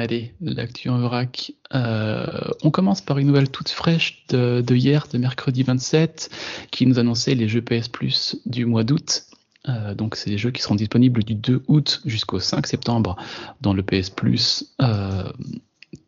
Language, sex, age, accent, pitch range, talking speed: French, male, 30-49, French, 110-140 Hz, 175 wpm